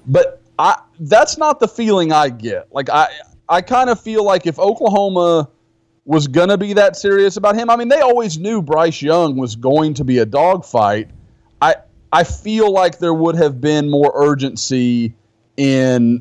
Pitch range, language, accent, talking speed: 125-165 Hz, English, American, 165 wpm